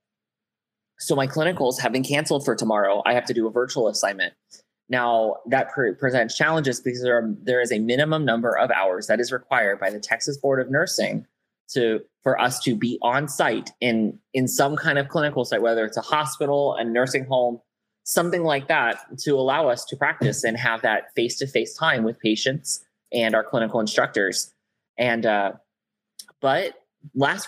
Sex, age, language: male, 20-39, English